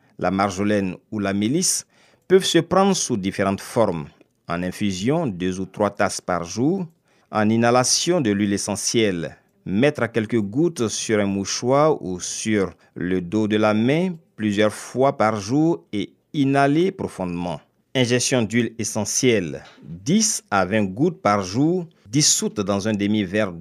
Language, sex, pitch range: French, male, 100-150 Hz